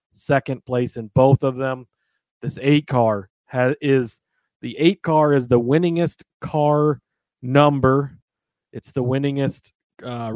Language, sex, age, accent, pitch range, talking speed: English, male, 30-49, American, 120-140 Hz, 135 wpm